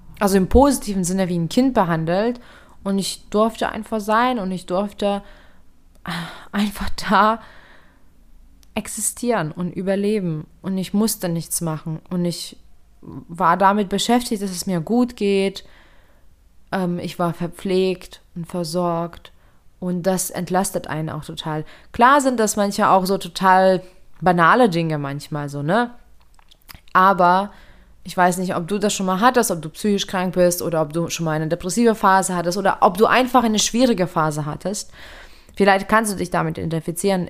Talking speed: 155 wpm